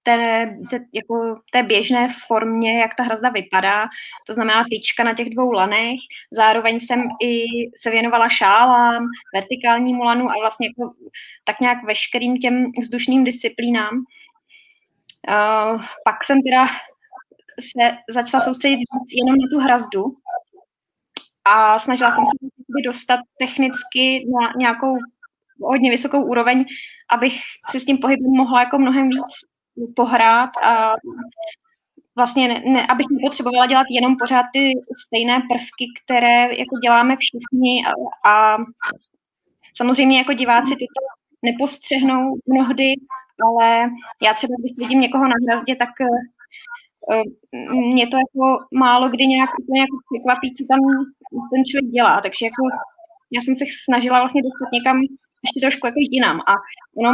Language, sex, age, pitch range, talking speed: Czech, female, 20-39, 235-265 Hz, 130 wpm